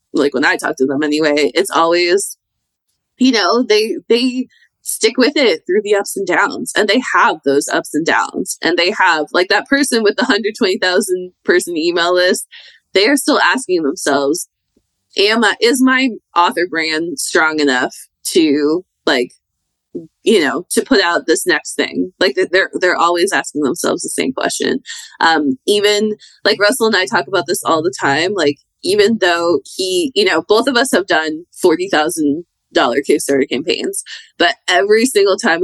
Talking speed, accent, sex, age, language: 170 wpm, American, female, 20-39, English